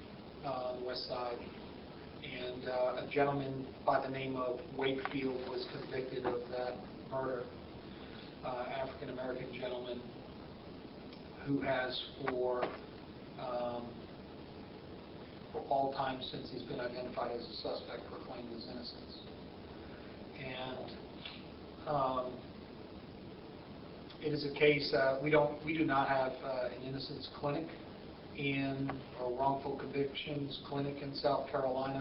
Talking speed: 120 wpm